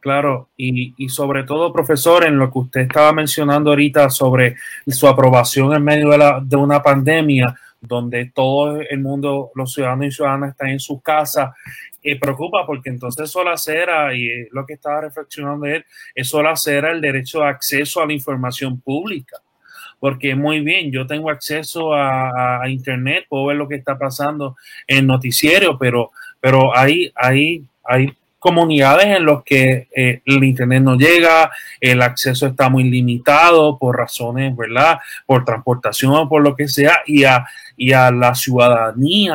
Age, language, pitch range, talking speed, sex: 30-49, Spanish, 130-150 Hz, 170 wpm, male